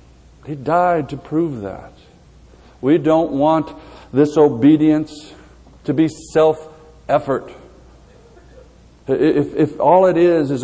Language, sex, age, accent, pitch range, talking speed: English, male, 60-79, American, 110-160 Hz, 105 wpm